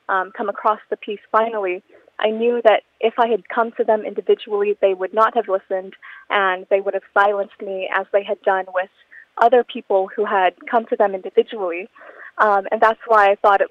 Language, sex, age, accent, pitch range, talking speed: English, female, 20-39, American, 200-240 Hz, 205 wpm